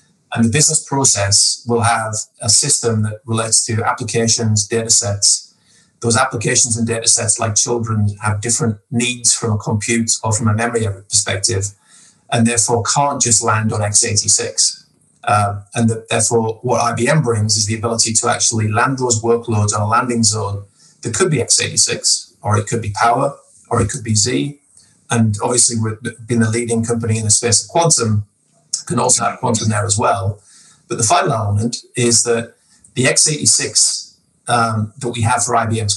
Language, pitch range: English, 110-120 Hz